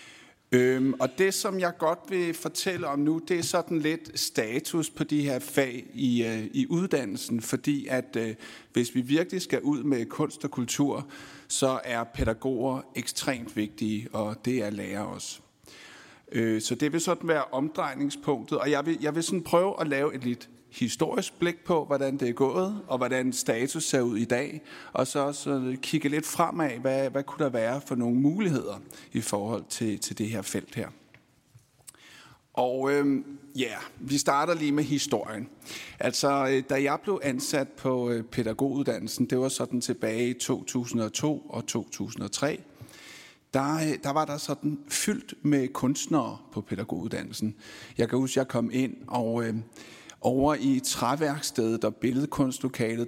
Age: 60-79